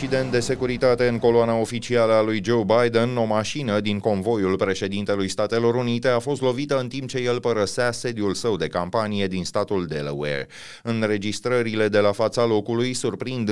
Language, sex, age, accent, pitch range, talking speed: Romanian, male, 30-49, native, 95-115 Hz, 165 wpm